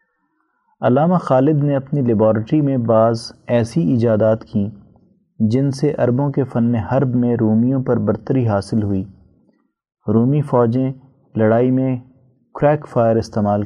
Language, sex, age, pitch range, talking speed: Urdu, male, 30-49, 110-135 Hz, 125 wpm